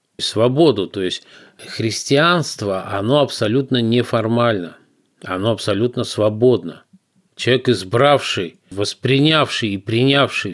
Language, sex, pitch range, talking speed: Russian, male, 95-125 Hz, 85 wpm